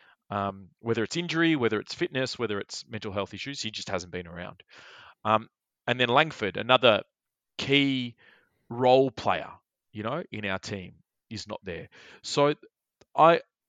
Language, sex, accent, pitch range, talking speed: English, male, Australian, 105-135 Hz, 155 wpm